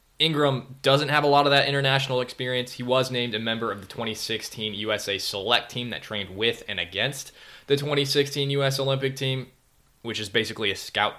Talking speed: 190 wpm